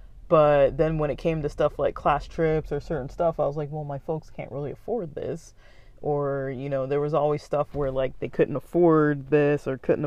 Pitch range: 135-155 Hz